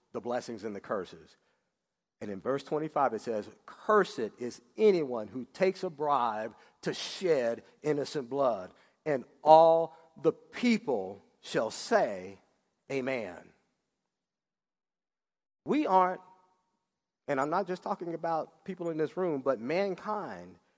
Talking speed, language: 125 wpm, English